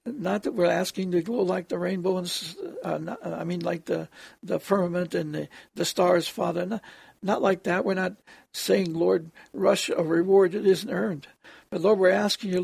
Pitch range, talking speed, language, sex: 175-210 Hz, 190 wpm, English, male